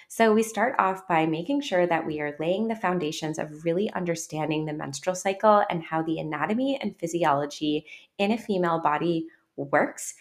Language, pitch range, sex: English, 160-190 Hz, female